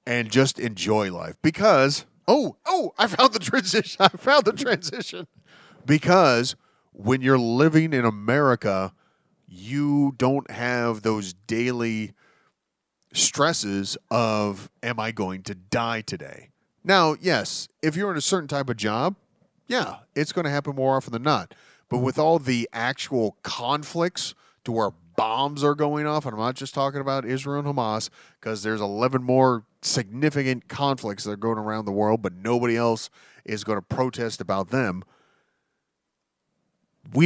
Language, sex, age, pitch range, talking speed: English, male, 30-49, 115-155 Hz, 155 wpm